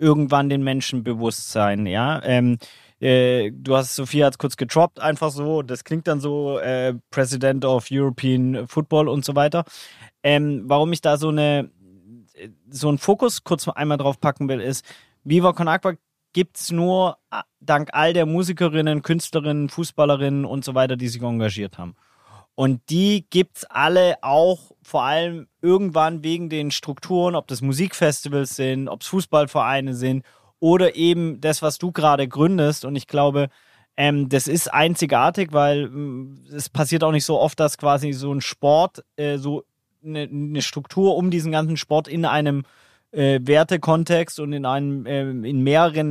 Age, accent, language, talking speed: 20-39, German, German, 165 wpm